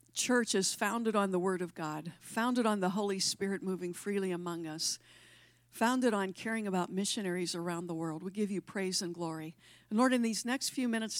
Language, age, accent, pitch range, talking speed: English, 60-79, American, 175-215 Hz, 205 wpm